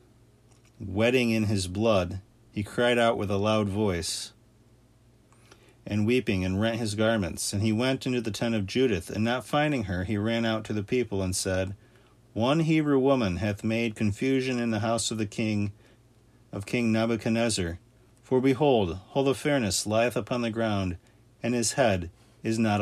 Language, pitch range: English, 100-120 Hz